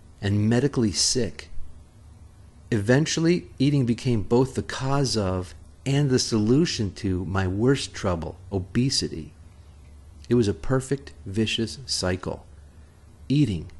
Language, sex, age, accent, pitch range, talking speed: English, male, 40-59, American, 80-125 Hz, 110 wpm